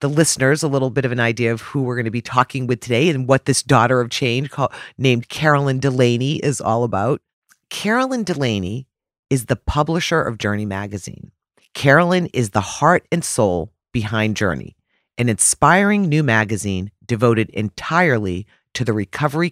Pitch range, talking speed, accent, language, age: 105-140 Hz, 170 wpm, American, English, 40-59